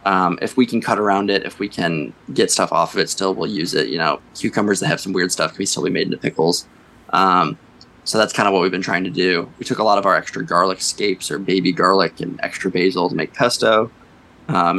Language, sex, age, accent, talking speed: English, male, 20-39, American, 255 wpm